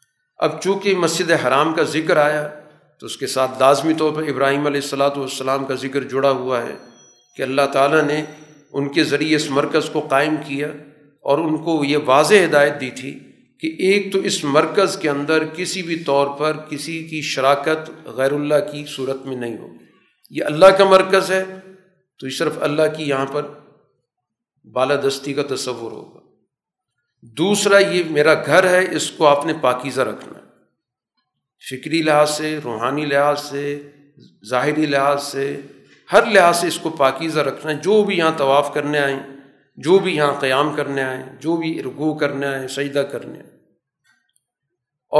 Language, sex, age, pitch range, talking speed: Urdu, male, 50-69, 140-160 Hz, 170 wpm